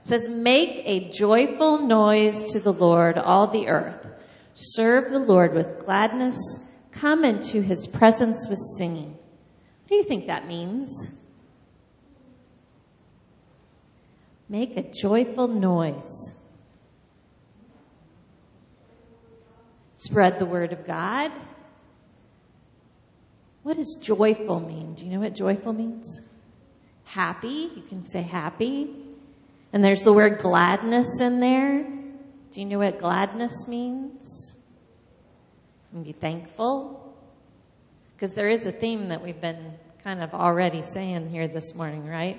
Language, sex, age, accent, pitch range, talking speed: English, female, 40-59, American, 175-235 Hz, 120 wpm